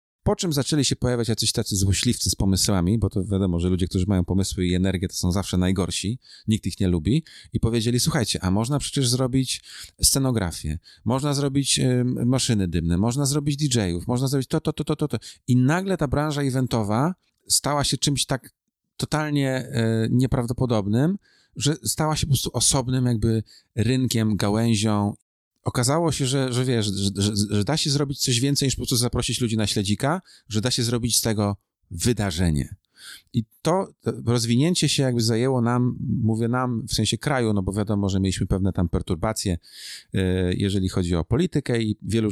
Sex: male